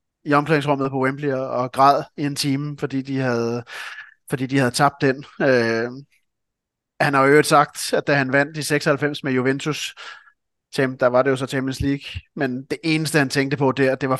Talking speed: 195 wpm